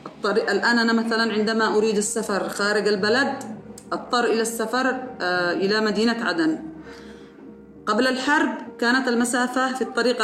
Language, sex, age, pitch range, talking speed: Arabic, female, 30-49, 205-250 Hz, 125 wpm